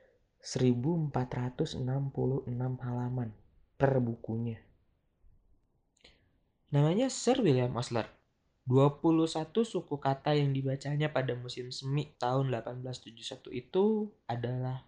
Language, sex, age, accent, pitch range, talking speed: Indonesian, male, 20-39, native, 125-150 Hz, 80 wpm